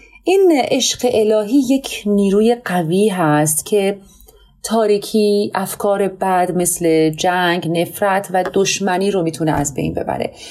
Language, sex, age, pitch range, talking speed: Persian, female, 30-49, 170-225 Hz, 120 wpm